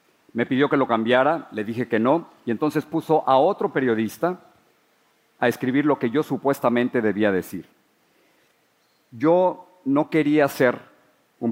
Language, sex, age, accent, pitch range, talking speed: Spanish, male, 50-69, Mexican, 115-145 Hz, 145 wpm